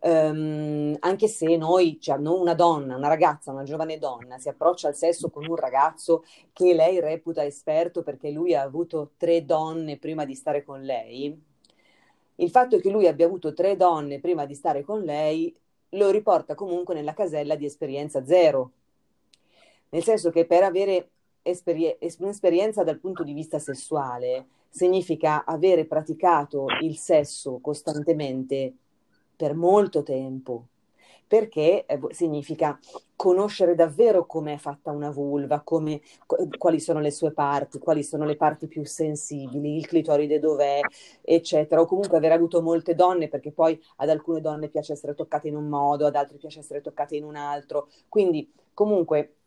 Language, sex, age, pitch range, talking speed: Italian, female, 30-49, 145-170 Hz, 150 wpm